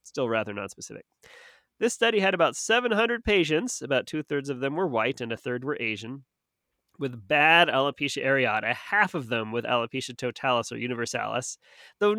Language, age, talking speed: English, 30-49, 160 wpm